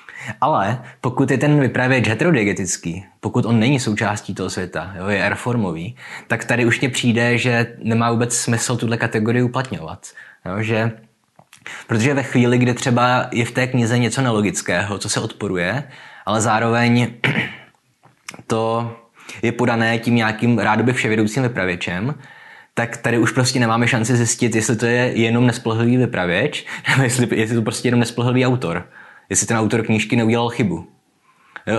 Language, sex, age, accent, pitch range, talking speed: Czech, male, 20-39, native, 105-120 Hz, 150 wpm